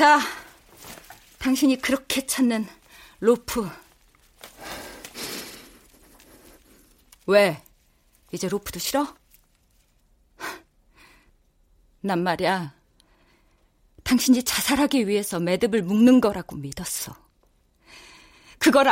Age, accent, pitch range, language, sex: 40-59, native, 215-310 Hz, Korean, female